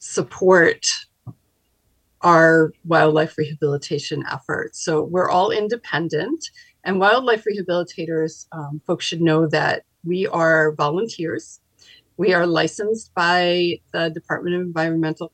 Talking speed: 110 wpm